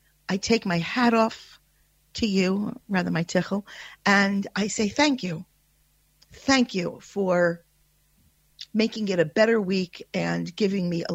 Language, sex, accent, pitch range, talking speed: English, female, American, 165-230 Hz, 145 wpm